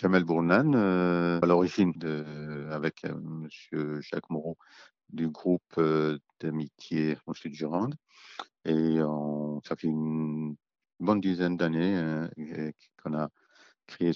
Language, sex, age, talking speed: French, male, 50-69, 125 wpm